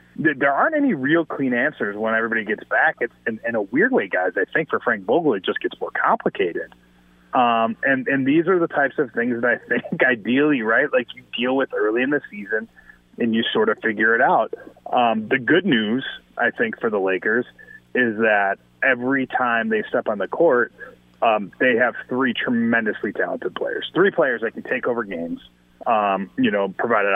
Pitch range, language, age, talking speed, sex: 105-135 Hz, English, 30-49, 205 wpm, male